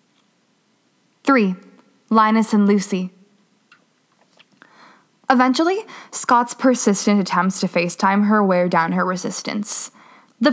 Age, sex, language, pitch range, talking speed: 10-29, female, English, 185-240 Hz, 90 wpm